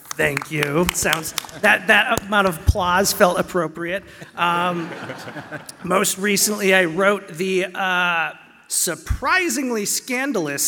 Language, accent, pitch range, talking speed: English, American, 165-225 Hz, 105 wpm